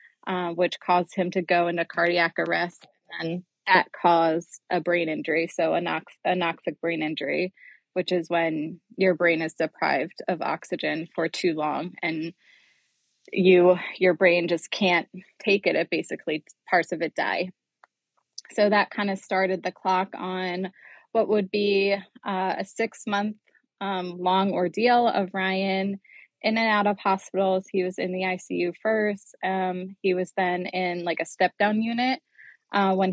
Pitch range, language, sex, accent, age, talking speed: 175-195 Hz, English, female, American, 20-39, 160 wpm